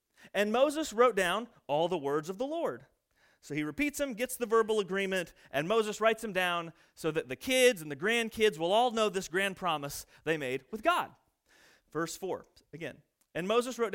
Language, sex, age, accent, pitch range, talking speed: English, male, 30-49, American, 170-225 Hz, 200 wpm